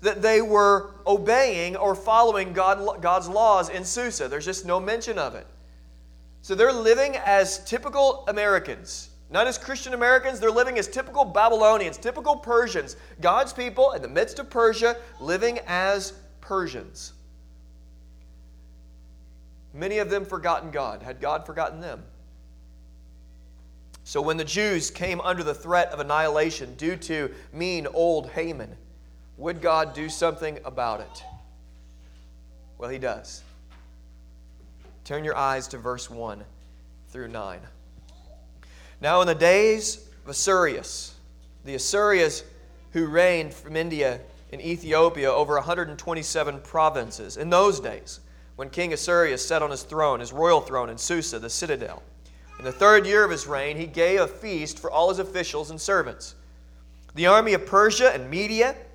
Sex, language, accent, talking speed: male, English, American, 145 wpm